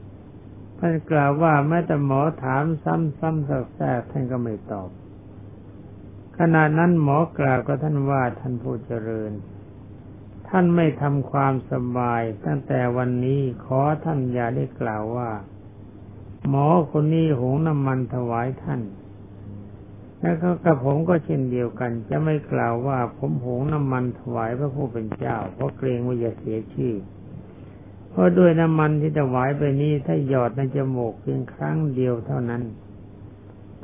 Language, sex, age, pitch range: Thai, male, 60-79, 100-140 Hz